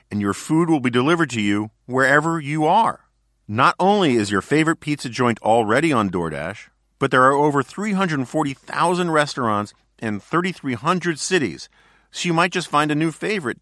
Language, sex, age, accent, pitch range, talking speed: English, male, 50-69, American, 115-160 Hz, 165 wpm